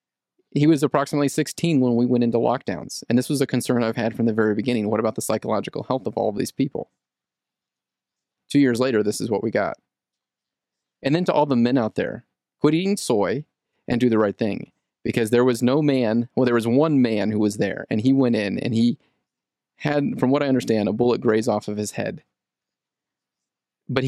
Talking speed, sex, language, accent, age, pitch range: 215 wpm, male, English, American, 30-49, 110-135 Hz